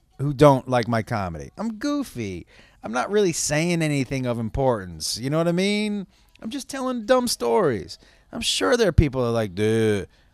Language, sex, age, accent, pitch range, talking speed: English, male, 30-49, American, 115-180 Hz, 190 wpm